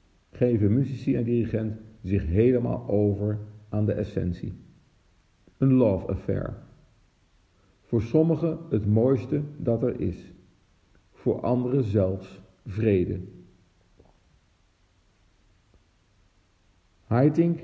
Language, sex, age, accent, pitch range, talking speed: Dutch, male, 50-69, Dutch, 95-125 Hz, 85 wpm